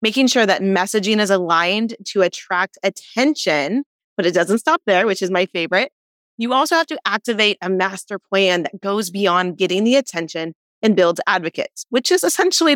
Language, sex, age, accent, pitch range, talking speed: English, female, 30-49, American, 185-245 Hz, 180 wpm